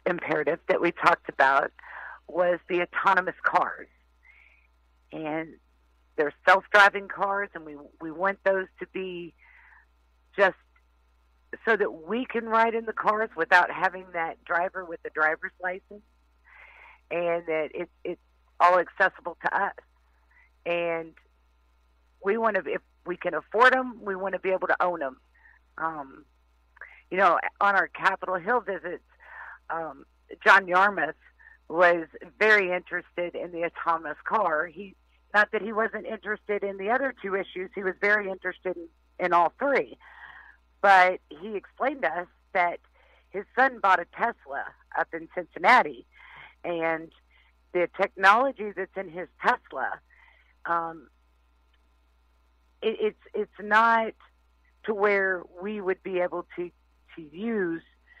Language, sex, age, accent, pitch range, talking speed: English, female, 50-69, American, 155-200 Hz, 140 wpm